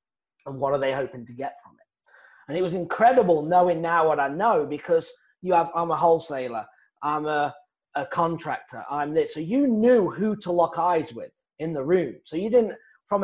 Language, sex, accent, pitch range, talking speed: English, male, British, 135-180 Hz, 205 wpm